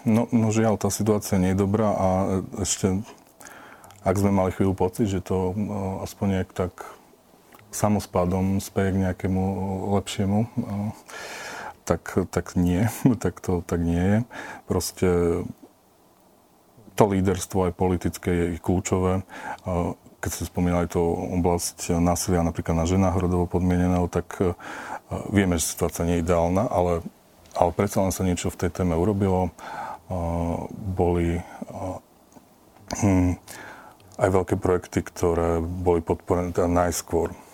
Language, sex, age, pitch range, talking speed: Slovak, male, 40-59, 85-95 Hz, 130 wpm